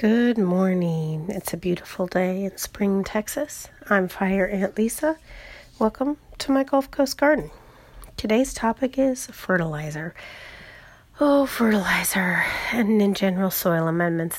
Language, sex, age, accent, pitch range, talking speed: English, female, 30-49, American, 175-220 Hz, 125 wpm